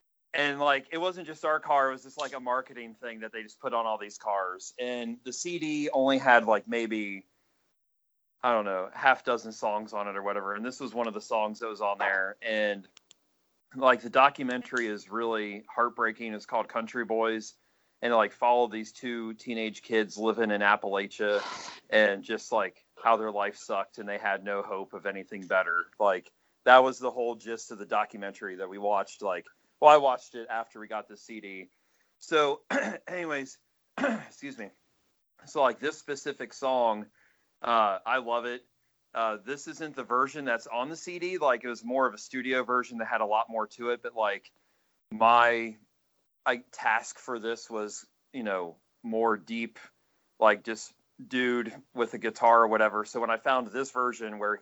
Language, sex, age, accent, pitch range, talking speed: English, male, 30-49, American, 110-125 Hz, 190 wpm